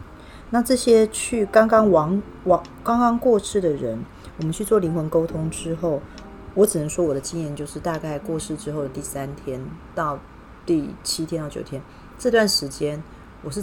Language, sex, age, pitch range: Chinese, female, 30-49, 140-170 Hz